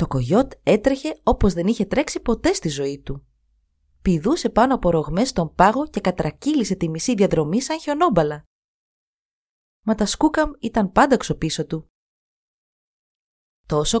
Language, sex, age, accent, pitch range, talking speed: Greek, female, 30-49, native, 155-235 Hz, 135 wpm